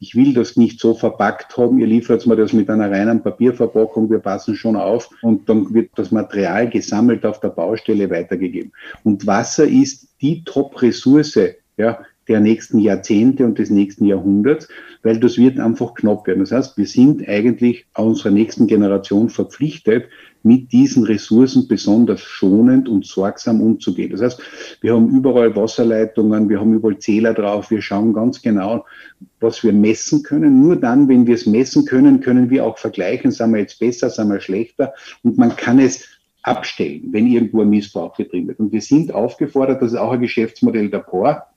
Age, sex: 50-69, male